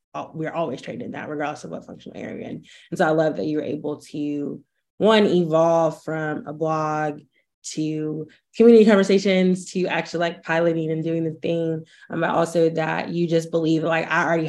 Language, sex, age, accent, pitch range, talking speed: English, female, 20-39, American, 155-180 Hz, 180 wpm